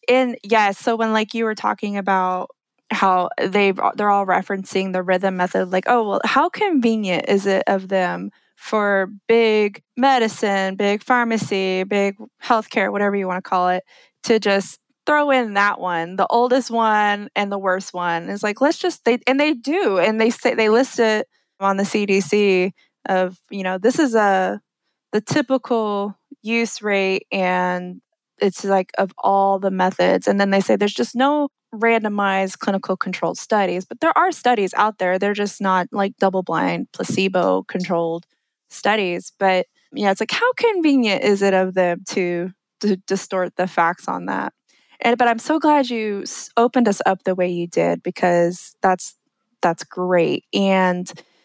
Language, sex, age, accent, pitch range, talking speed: English, female, 20-39, American, 185-230 Hz, 175 wpm